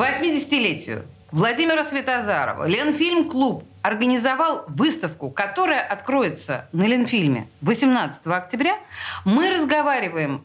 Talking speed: 85 wpm